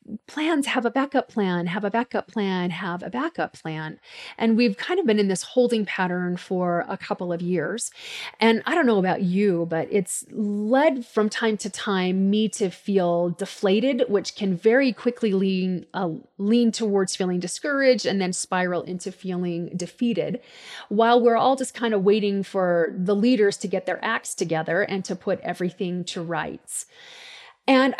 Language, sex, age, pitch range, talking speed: English, female, 30-49, 180-235 Hz, 175 wpm